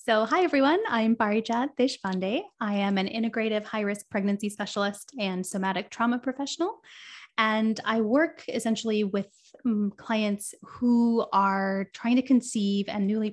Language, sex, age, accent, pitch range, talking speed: English, female, 20-39, American, 185-220 Hz, 135 wpm